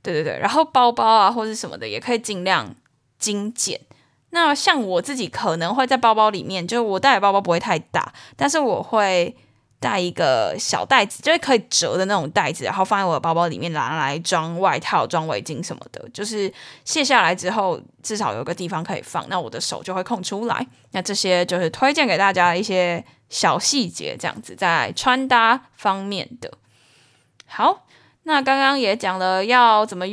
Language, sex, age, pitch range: Chinese, female, 10-29, 180-240 Hz